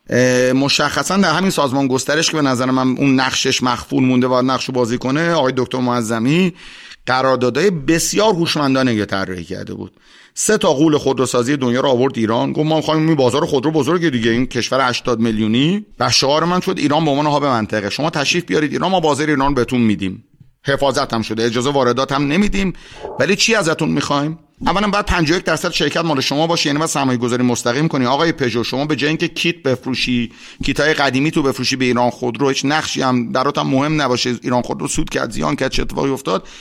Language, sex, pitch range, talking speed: Persian, male, 125-160 Hz, 195 wpm